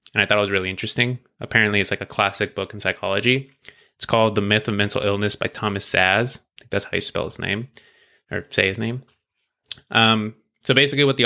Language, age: English, 20-39